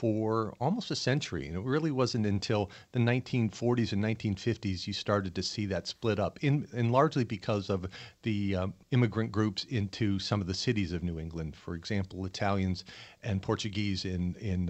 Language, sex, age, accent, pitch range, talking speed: English, male, 40-59, American, 95-115 Hz, 180 wpm